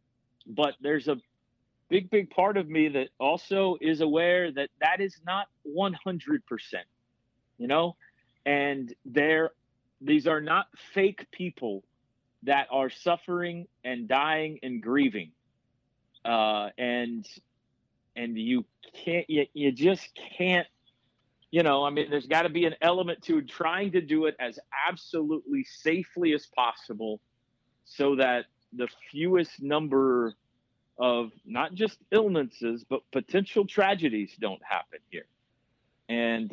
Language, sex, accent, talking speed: English, male, American, 130 wpm